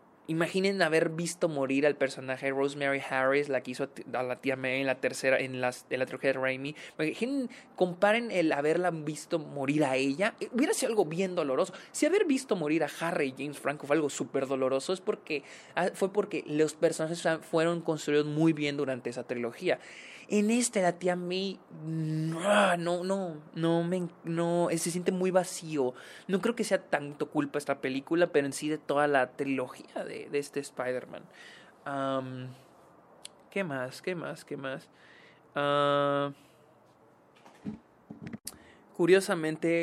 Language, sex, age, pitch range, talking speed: Spanish, male, 20-39, 135-175 Hz, 155 wpm